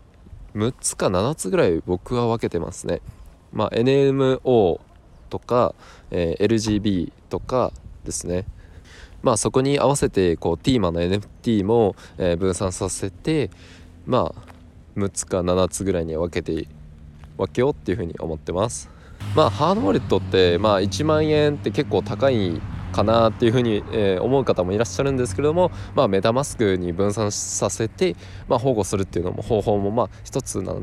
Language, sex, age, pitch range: Japanese, male, 20-39, 90-115 Hz